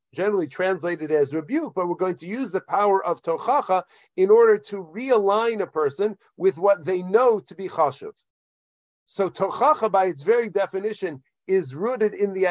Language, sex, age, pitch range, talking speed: English, male, 50-69, 180-220 Hz, 175 wpm